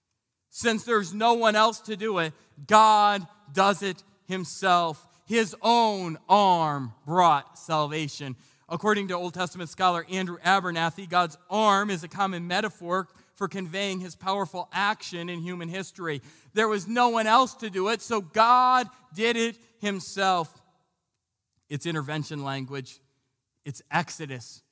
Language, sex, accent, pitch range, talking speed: English, male, American, 135-185 Hz, 135 wpm